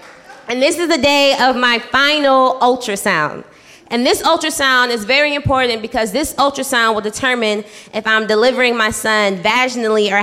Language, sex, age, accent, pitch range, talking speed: English, female, 20-39, American, 200-260 Hz, 160 wpm